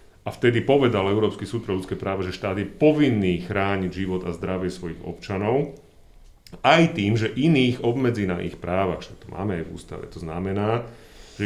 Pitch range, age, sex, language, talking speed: 95-120 Hz, 40-59, male, Slovak, 175 wpm